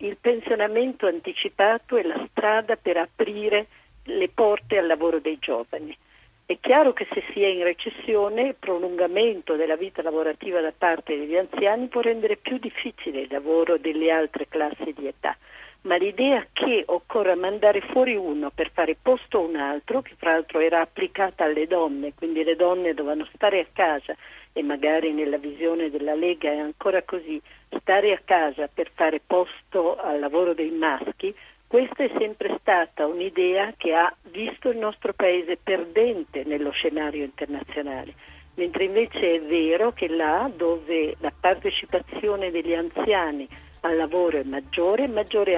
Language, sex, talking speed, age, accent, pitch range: Italian, female, 155 wpm, 50-69, native, 160-215 Hz